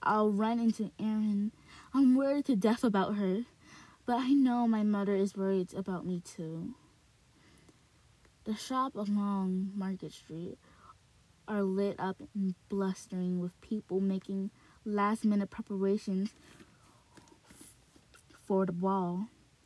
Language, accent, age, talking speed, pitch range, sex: English, American, 20-39, 120 wpm, 185-225 Hz, female